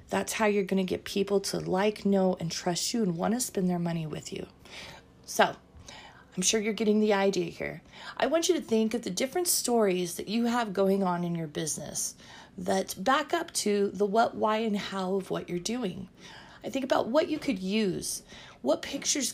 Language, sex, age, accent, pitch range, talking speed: English, female, 30-49, American, 185-225 Hz, 205 wpm